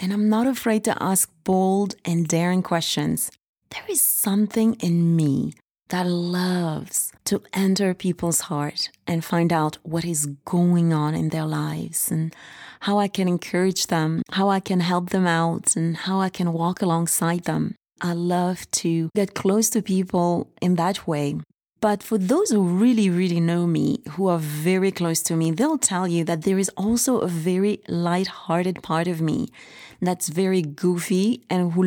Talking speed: 175 wpm